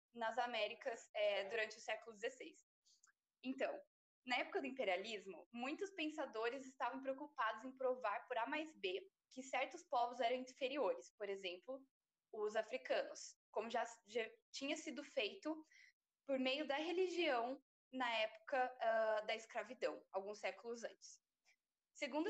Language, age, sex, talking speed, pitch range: Portuguese, 10-29, female, 135 wpm, 230-295 Hz